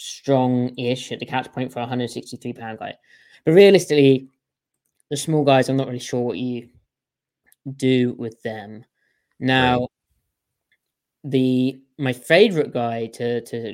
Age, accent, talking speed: 20-39, British, 135 wpm